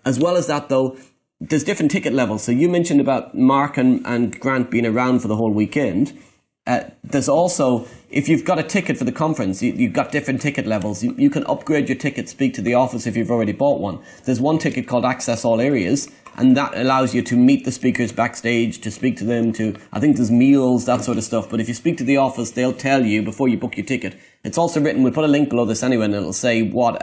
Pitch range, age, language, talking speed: 110-135 Hz, 30-49, English, 250 wpm